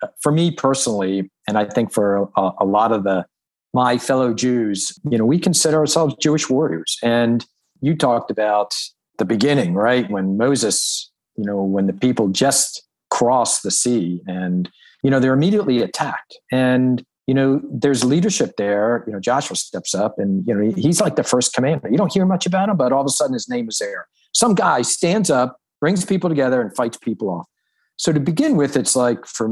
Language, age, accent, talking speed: English, 50-69, American, 200 wpm